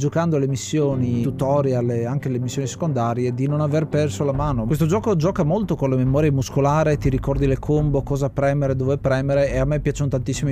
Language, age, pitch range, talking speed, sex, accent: Italian, 30-49, 125-150 Hz, 205 wpm, male, native